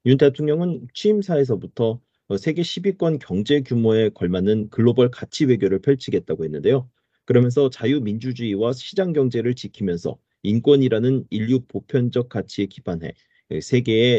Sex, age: male, 40-59